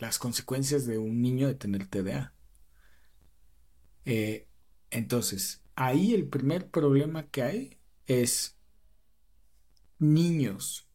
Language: Spanish